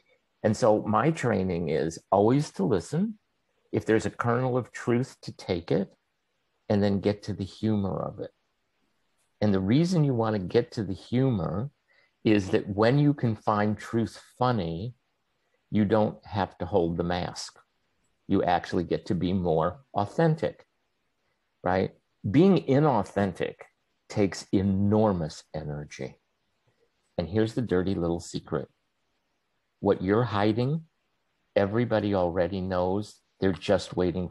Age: 50-69